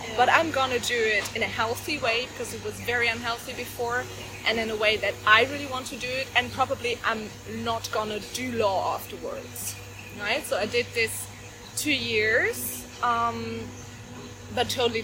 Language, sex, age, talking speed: German, female, 20-39, 175 wpm